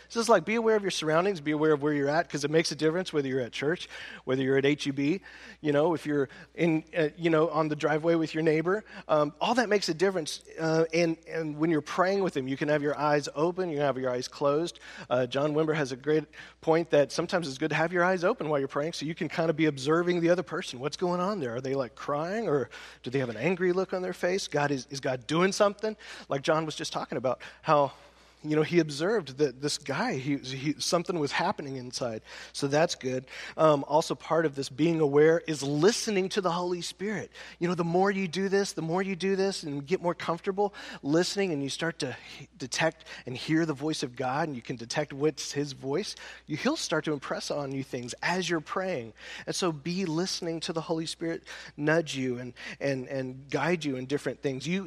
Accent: American